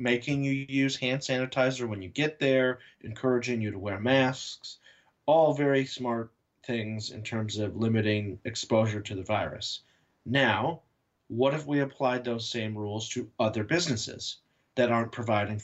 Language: English